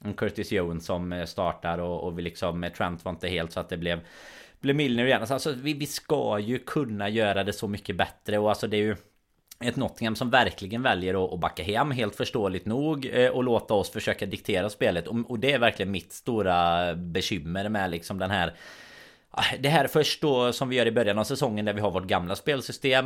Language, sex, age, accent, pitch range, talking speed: Swedish, male, 30-49, native, 95-120 Hz, 210 wpm